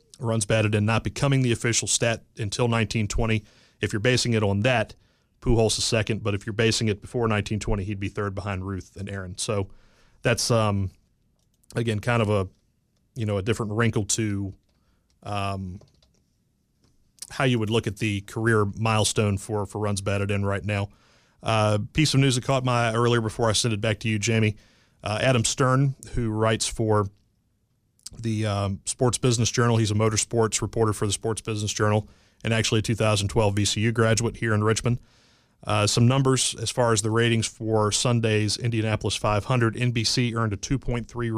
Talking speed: 180 wpm